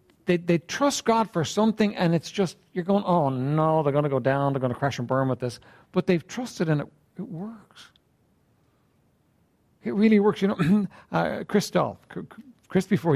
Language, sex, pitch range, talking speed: English, male, 130-200 Hz, 195 wpm